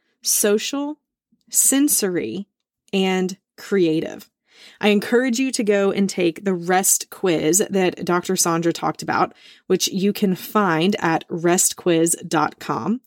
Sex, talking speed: female, 115 wpm